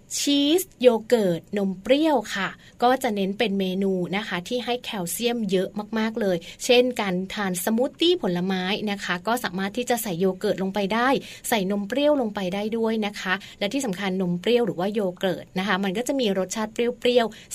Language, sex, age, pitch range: Thai, female, 20-39, 185-240 Hz